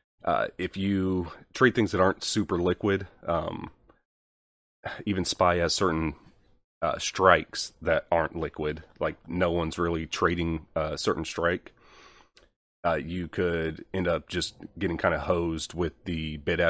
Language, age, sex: English, 30-49, male